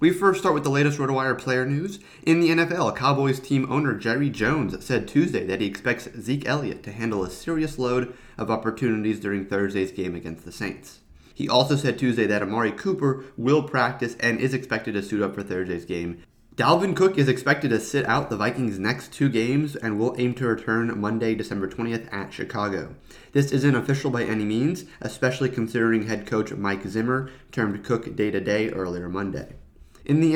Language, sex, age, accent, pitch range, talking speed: English, male, 30-49, American, 105-135 Hz, 190 wpm